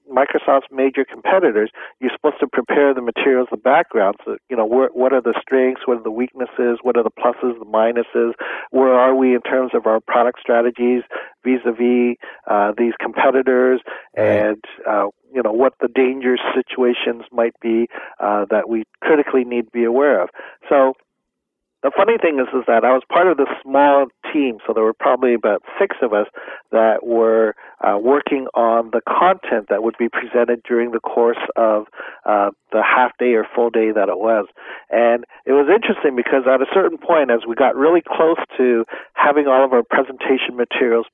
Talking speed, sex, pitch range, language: 185 wpm, male, 115-130 Hz, English